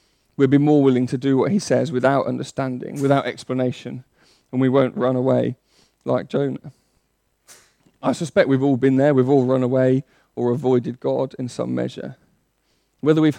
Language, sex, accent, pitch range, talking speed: English, male, British, 130-145 Hz, 170 wpm